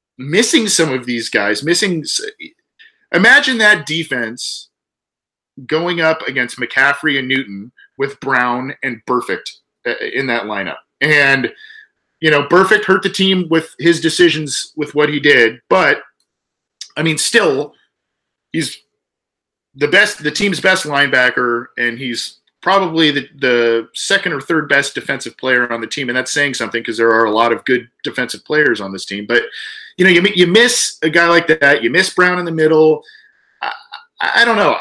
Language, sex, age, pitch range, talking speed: English, male, 40-59, 130-185 Hz, 165 wpm